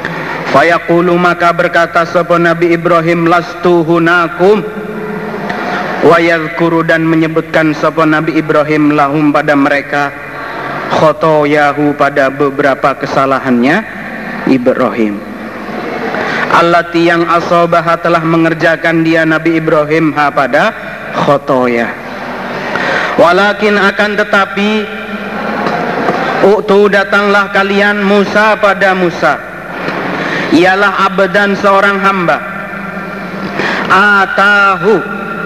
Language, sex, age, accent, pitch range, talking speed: Indonesian, male, 50-69, native, 160-200 Hz, 75 wpm